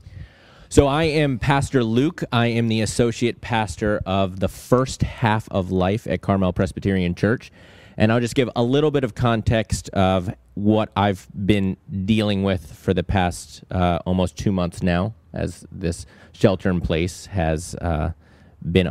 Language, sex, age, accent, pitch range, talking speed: English, male, 30-49, American, 85-110 Hz, 155 wpm